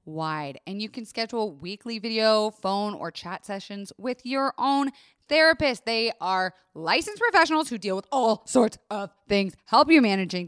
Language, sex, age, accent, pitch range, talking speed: English, female, 20-39, American, 180-285 Hz, 165 wpm